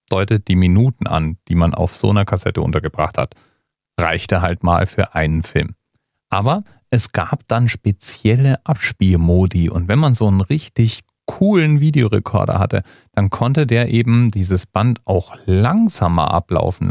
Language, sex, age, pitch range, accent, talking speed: German, male, 40-59, 90-120 Hz, German, 150 wpm